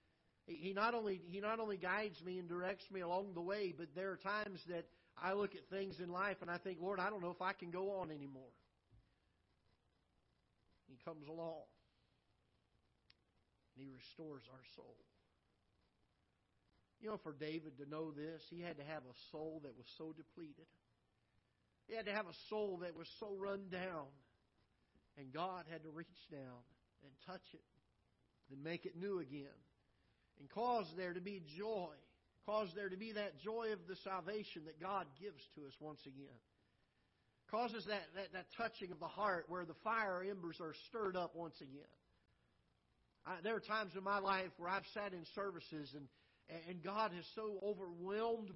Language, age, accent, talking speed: English, 50-69, American, 180 wpm